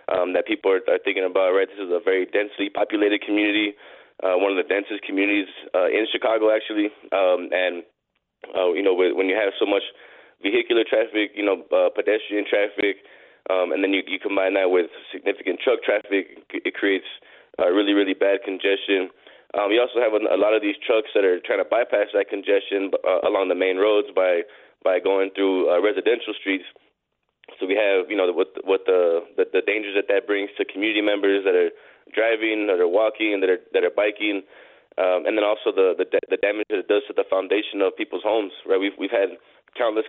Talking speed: 210 wpm